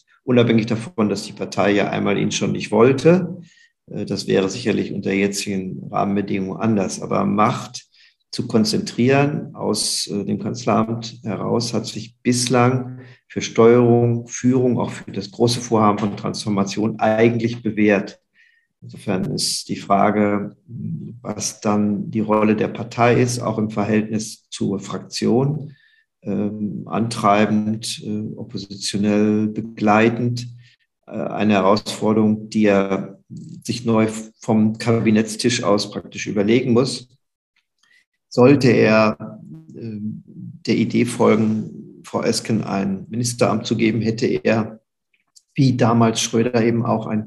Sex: male